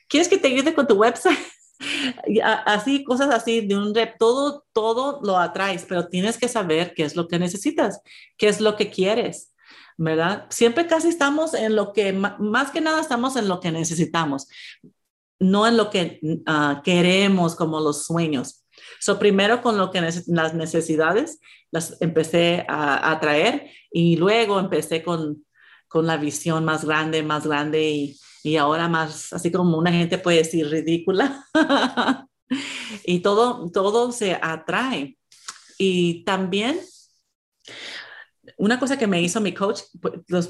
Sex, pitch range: female, 170-245 Hz